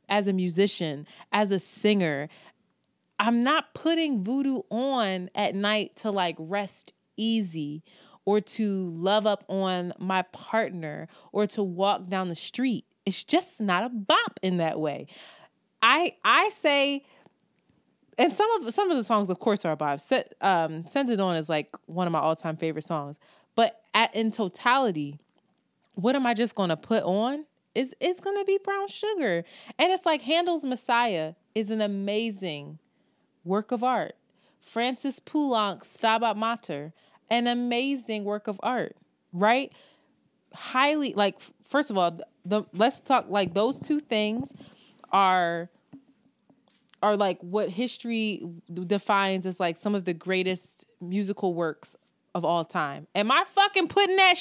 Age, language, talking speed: 20-39, English, 155 wpm